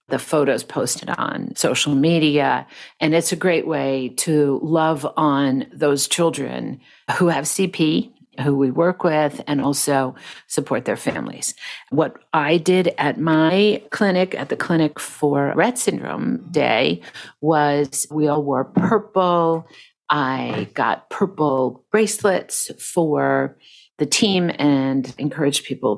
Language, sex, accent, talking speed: English, female, American, 130 wpm